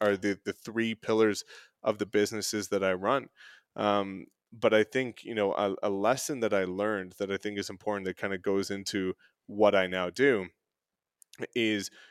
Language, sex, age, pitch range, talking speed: English, male, 20-39, 100-120 Hz, 190 wpm